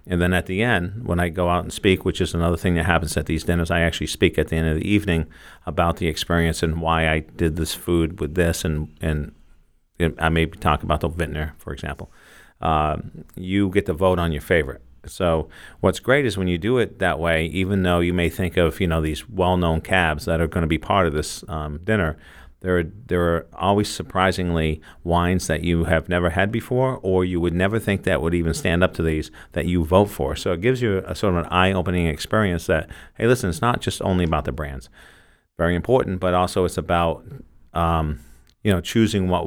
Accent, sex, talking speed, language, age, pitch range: American, male, 230 wpm, English, 50-69, 80-95 Hz